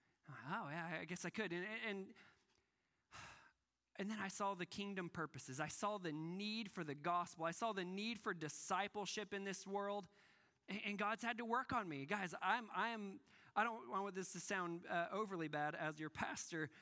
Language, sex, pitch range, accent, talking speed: English, male, 160-200 Hz, American, 195 wpm